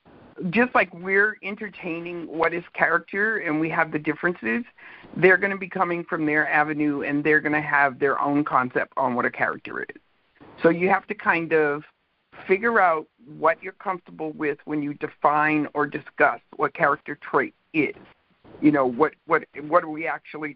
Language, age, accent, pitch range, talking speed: English, 50-69, American, 155-190 Hz, 180 wpm